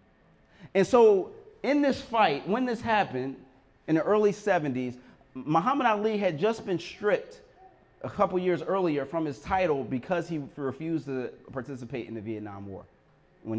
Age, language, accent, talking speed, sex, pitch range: 30-49, English, American, 155 wpm, male, 150-210 Hz